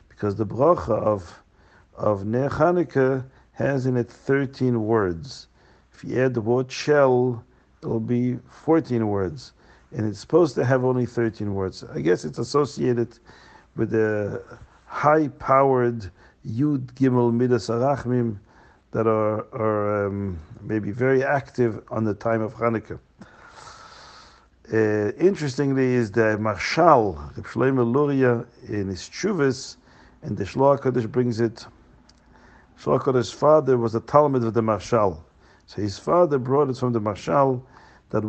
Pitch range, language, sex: 110-135 Hz, English, male